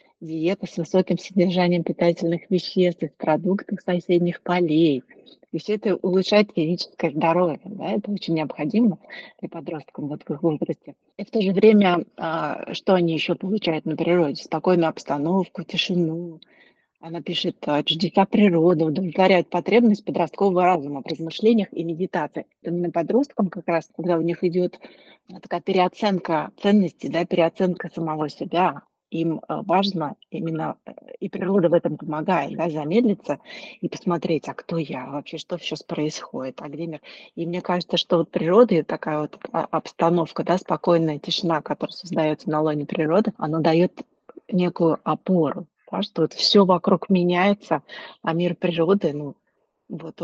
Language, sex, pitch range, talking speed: Russian, female, 160-185 Hz, 145 wpm